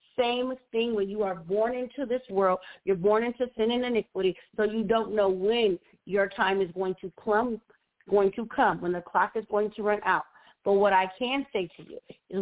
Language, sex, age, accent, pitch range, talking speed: English, female, 40-59, American, 190-235 Hz, 205 wpm